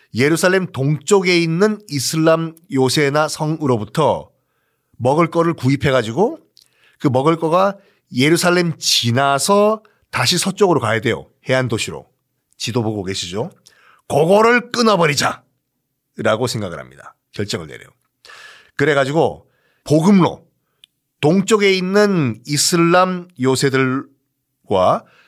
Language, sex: Korean, male